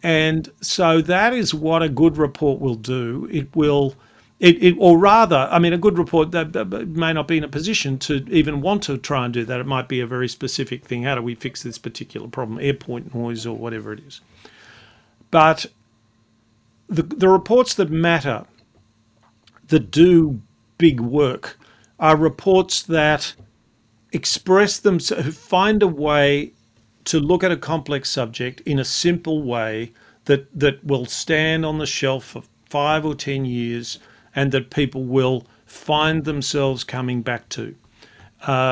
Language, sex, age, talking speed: English, male, 50-69, 165 wpm